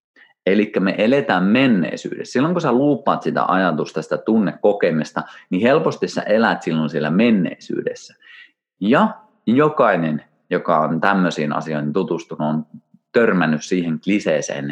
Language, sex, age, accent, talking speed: Finnish, male, 30-49, native, 120 wpm